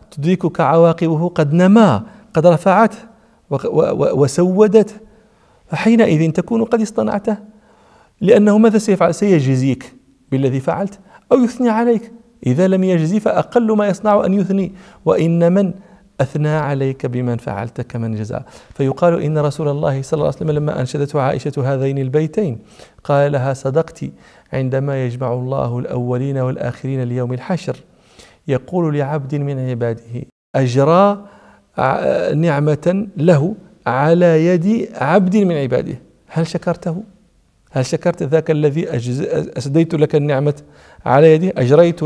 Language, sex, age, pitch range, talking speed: English, male, 40-59, 140-195 Hz, 115 wpm